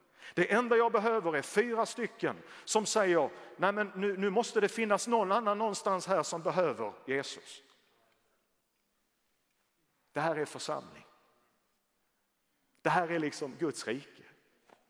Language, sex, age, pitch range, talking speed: Swedish, male, 50-69, 135-185 Hz, 135 wpm